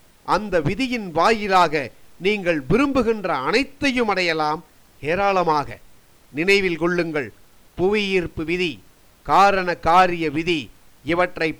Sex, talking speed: male, 85 wpm